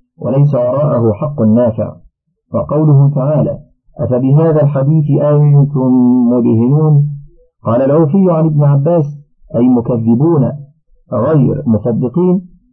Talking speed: 90 wpm